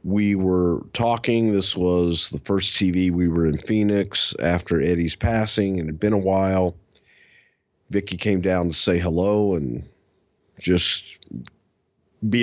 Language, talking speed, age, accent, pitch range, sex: English, 140 wpm, 40-59, American, 90-120 Hz, male